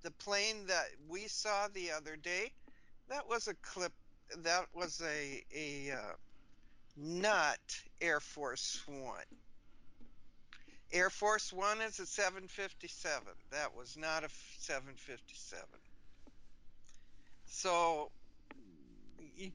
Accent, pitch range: American, 145-205 Hz